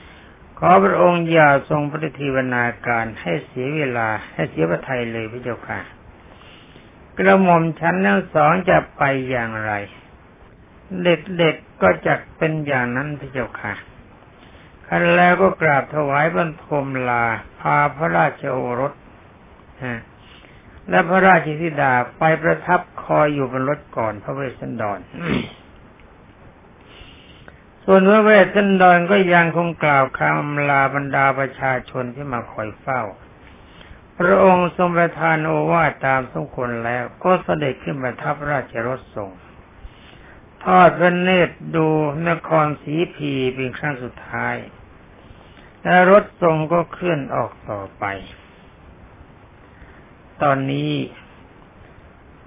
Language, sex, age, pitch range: Thai, male, 60-79, 120-170 Hz